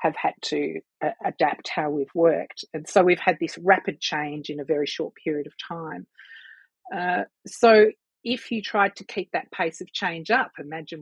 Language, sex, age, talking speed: English, female, 40-59, 185 wpm